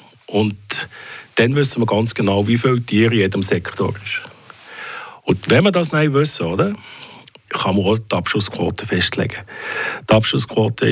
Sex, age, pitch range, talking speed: male, 50-69, 100-130 Hz, 155 wpm